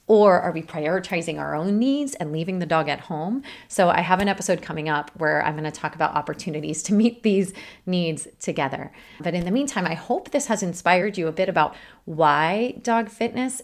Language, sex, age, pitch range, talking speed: English, female, 30-49, 170-230 Hz, 210 wpm